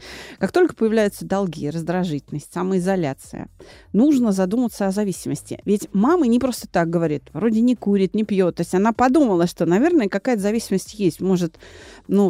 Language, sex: Russian, female